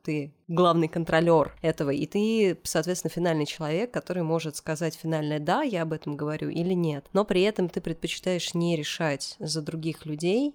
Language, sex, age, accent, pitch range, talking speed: Russian, female, 20-39, native, 160-190 Hz, 170 wpm